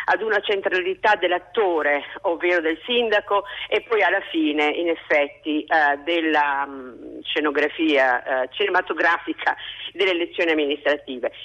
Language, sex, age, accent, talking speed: Italian, female, 50-69, native, 100 wpm